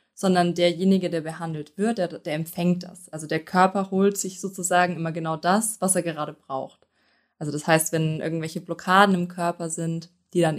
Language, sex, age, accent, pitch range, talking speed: German, female, 20-39, German, 160-185 Hz, 185 wpm